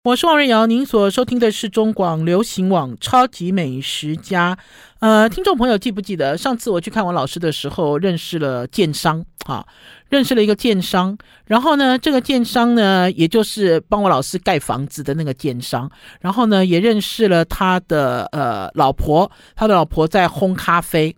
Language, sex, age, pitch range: Chinese, male, 50-69, 160-220 Hz